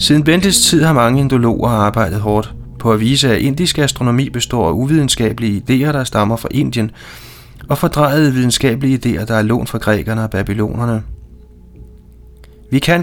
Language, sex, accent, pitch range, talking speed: Danish, male, native, 110-135 Hz, 160 wpm